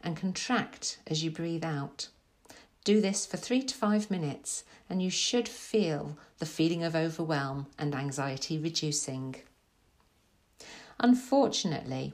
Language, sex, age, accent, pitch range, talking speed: English, female, 50-69, British, 145-210 Hz, 125 wpm